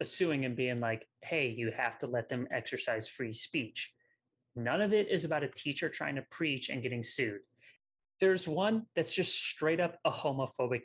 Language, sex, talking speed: English, male, 190 wpm